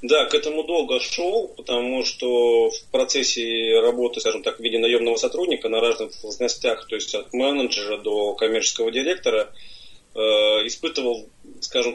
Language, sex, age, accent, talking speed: Russian, male, 30-49, native, 145 wpm